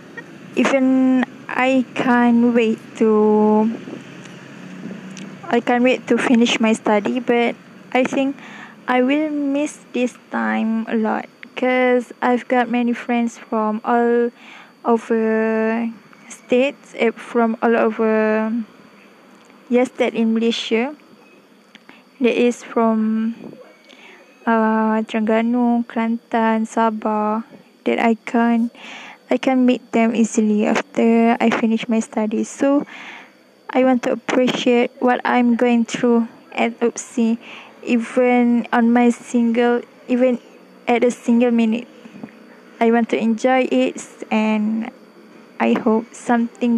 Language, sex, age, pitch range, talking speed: English, female, 20-39, 225-250 Hz, 110 wpm